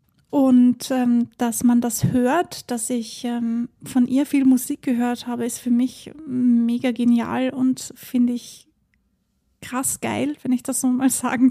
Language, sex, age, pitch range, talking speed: German, female, 30-49, 245-275 Hz, 160 wpm